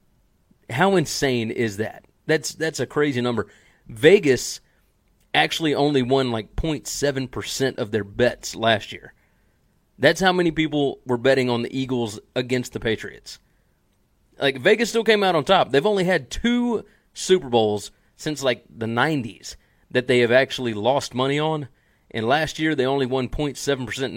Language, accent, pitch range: English, American, 115-150 Hz